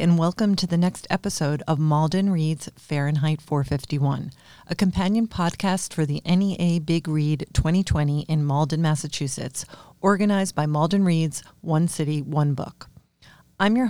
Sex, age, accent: female, 40-59, American